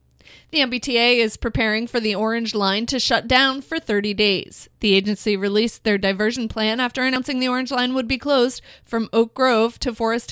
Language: English